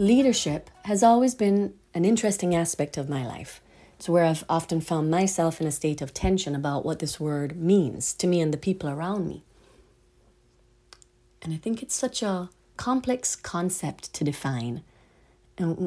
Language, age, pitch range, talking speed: English, 40-59, 145-180 Hz, 165 wpm